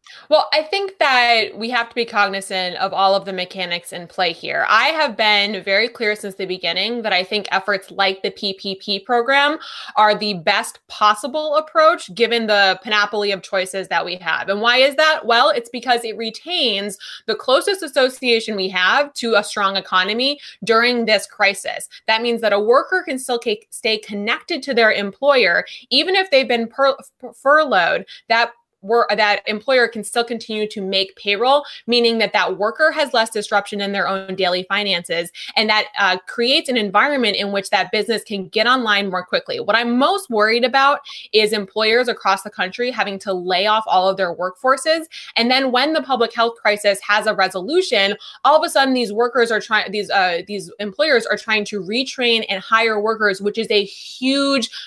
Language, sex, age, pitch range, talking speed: English, female, 20-39, 200-255 Hz, 190 wpm